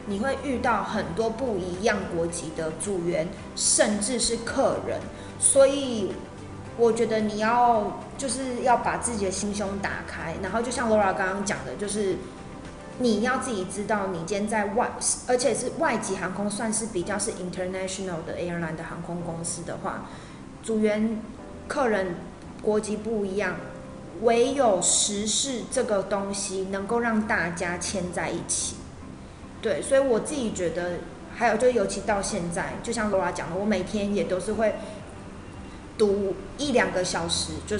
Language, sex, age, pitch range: Chinese, female, 20-39, 180-225 Hz